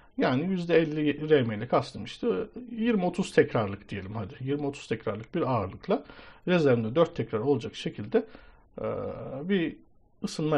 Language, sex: Turkish, male